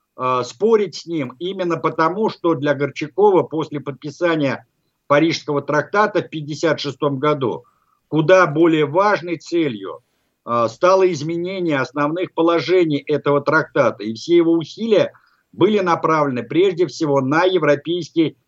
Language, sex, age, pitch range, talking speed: Russian, male, 50-69, 140-170 Hz, 115 wpm